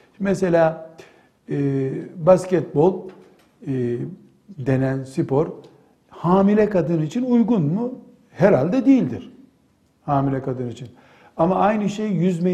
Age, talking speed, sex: 60-79, 95 wpm, male